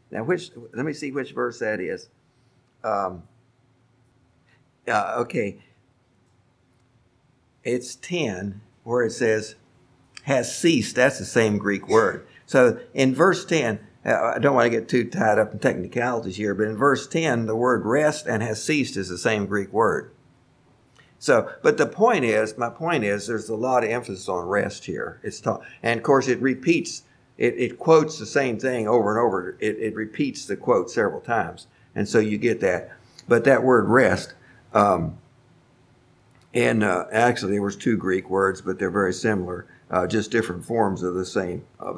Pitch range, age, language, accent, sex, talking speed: 100-125 Hz, 50-69, English, American, male, 175 wpm